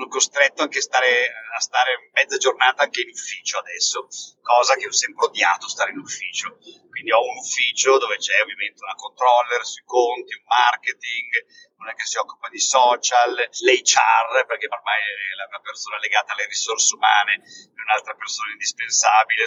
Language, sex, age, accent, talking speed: Italian, male, 30-49, native, 165 wpm